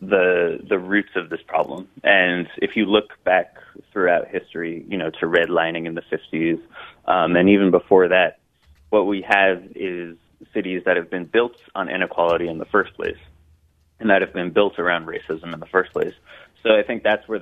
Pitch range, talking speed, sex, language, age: 85-95 Hz, 195 wpm, male, English, 20-39